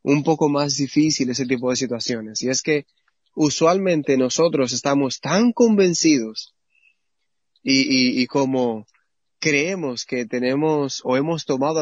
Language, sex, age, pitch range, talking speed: Spanish, male, 20-39, 125-160 Hz, 125 wpm